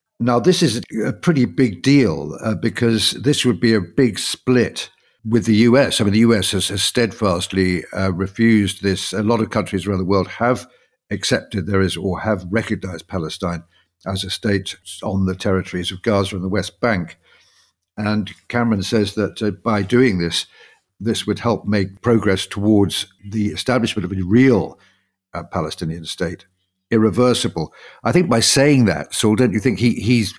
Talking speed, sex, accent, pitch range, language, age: 175 wpm, male, British, 95-110 Hz, English, 60-79